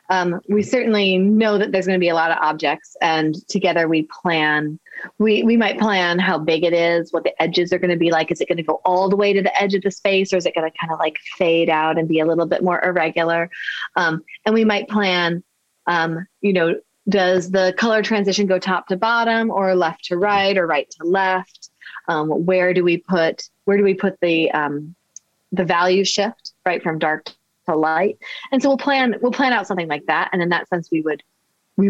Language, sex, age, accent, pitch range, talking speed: English, female, 30-49, American, 160-200 Hz, 235 wpm